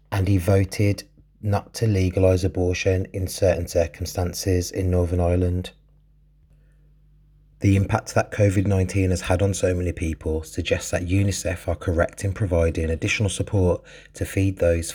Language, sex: English, male